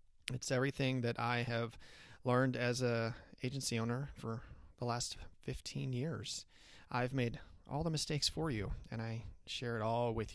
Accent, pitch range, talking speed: American, 110-130 Hz, 160 wpm